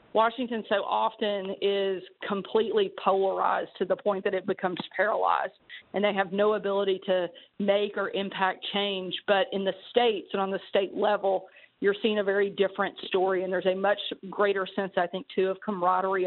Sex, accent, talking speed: female, American, 180 wpm